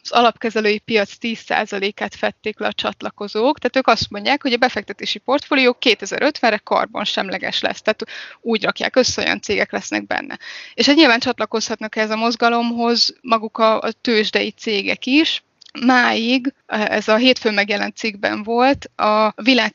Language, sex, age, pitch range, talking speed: Hungarian, female, 20-39, 210-235 Hz, 150 wpm